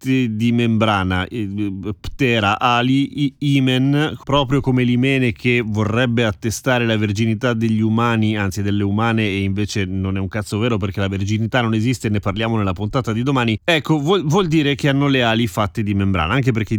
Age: 30-49